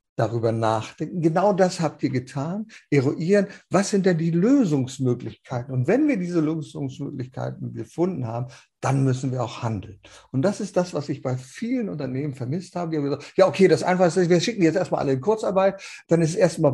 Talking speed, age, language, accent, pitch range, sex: 195 wpm, 50-69, German, German, 130-175 Hz, male